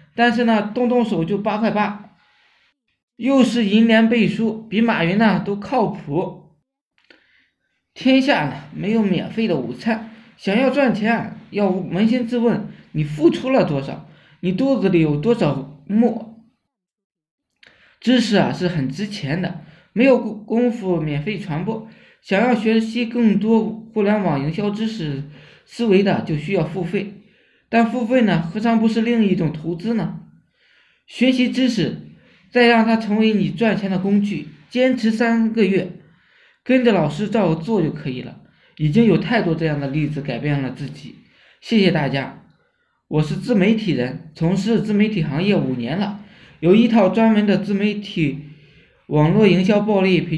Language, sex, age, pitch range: Chinese, male, 20-39, 165-225 Hz